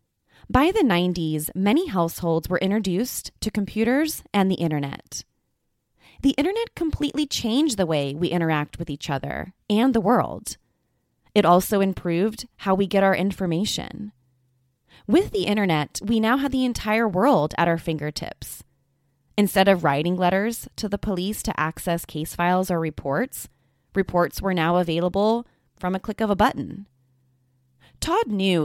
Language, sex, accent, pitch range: English, female, American, 160-225 Hz